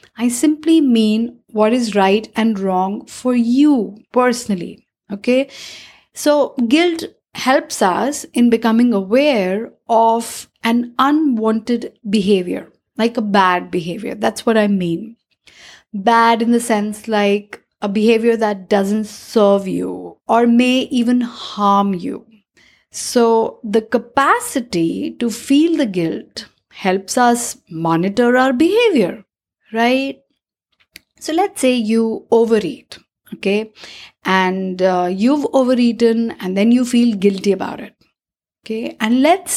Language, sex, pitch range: English, female, 205-260 Hz